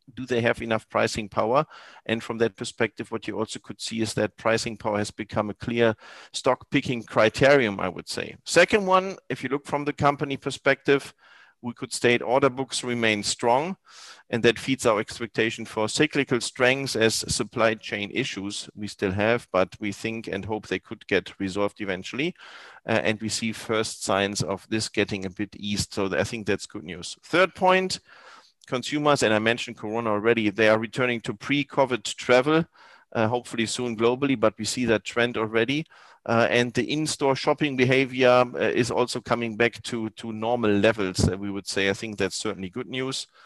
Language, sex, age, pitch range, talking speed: English, male, 50-69, 110-130 Hz, 190 wpm